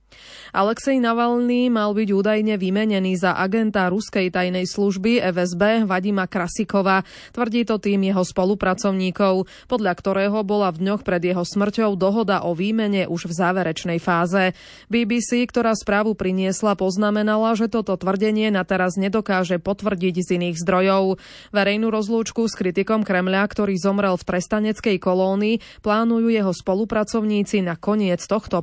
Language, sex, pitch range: Slovak, female, 180-215 Hz